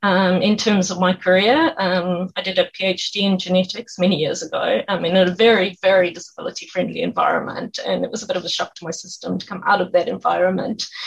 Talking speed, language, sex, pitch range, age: 220 wpm, English, female, 180-240 Hz, 20-39